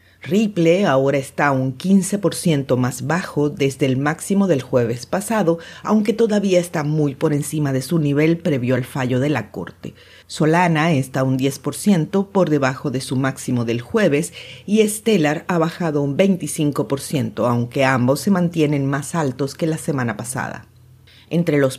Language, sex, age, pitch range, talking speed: Spanish, female, 40-59, 130-175 Hz, 155 wpm